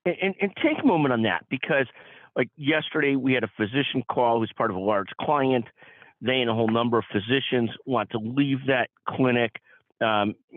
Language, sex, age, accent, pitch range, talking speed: English, male, 50-69, American, 110-140 Hz, 195 wpm